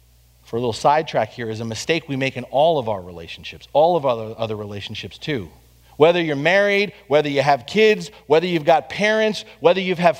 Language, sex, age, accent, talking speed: English, male, 40-59, American, 205 wpm